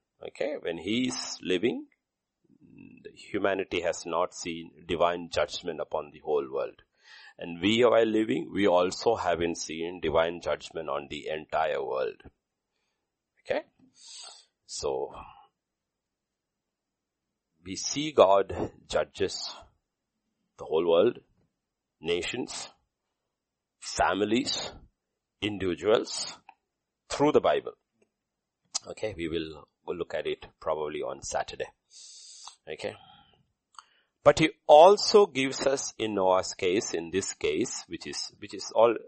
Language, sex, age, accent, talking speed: English, male, 50-69, Indian, 110 wpm